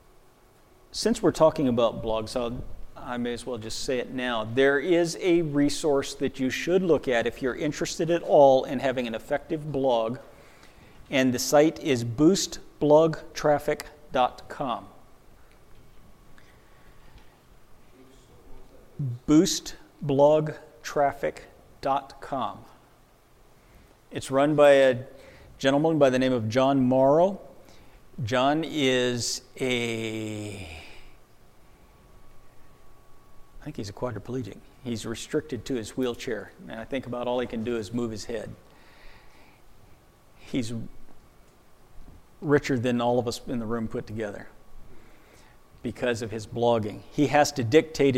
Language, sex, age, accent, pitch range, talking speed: English, male, 50-69, American, 115-140 Hz, 115 wpm